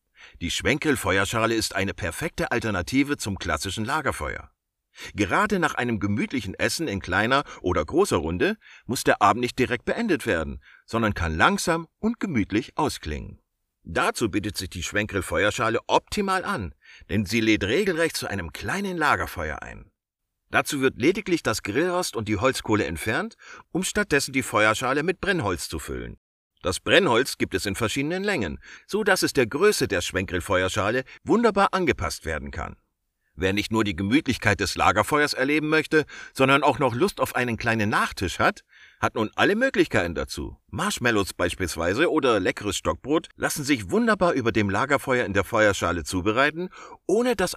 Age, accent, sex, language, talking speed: 50-69, German, male, German, 155 wpm